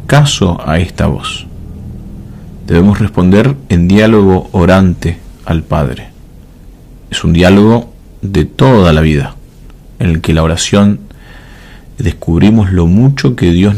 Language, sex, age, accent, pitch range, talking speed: Spanish, male, 40-59, Argentinian, 85-105 Hz, 120 wpm